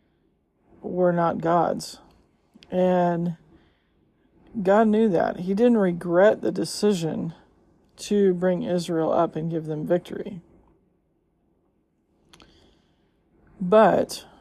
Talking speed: 85 wpm